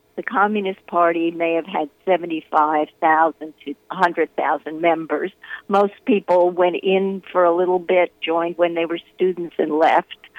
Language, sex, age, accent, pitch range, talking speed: English, female, 60-79, American, 165-215 Hz, 145 wpm